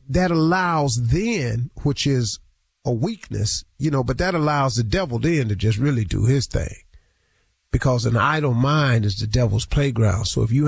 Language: English